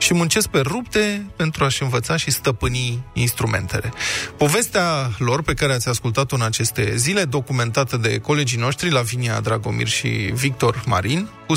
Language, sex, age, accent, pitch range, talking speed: Romanian, male, 20-39, native, 120-165 Hz, 155 wpm